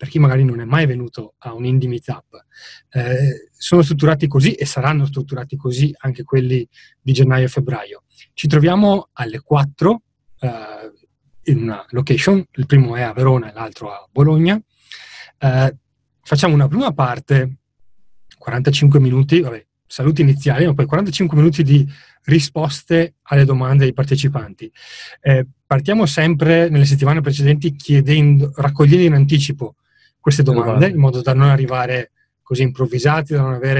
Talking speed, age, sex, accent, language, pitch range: 145 wpm, 30-49, male, native, Italian, 130-150 Hz